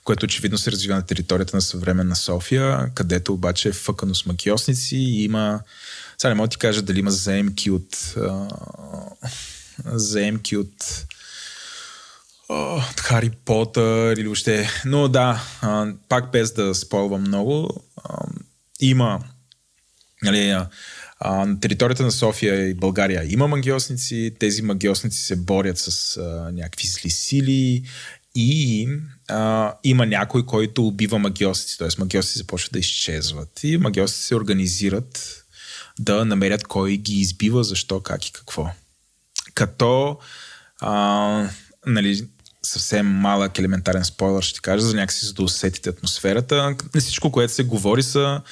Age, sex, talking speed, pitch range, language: 20-39, male, 130 wpm, 95-120 Hz, Bulgarian